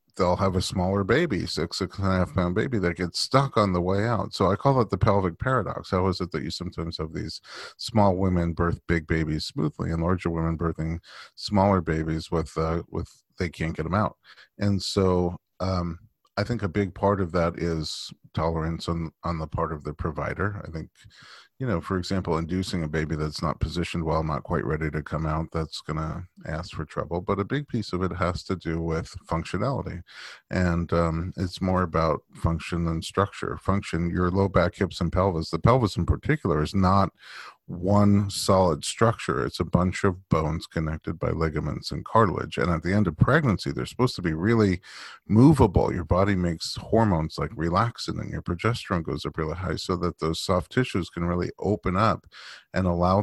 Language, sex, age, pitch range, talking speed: English, male, 40-59, 80-100 Hz, 200 wpm